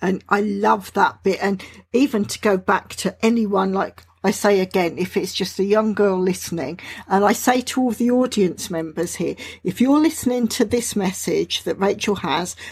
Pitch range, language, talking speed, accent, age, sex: 190-235 Hz, English, 195 wpm, British, 50-69, female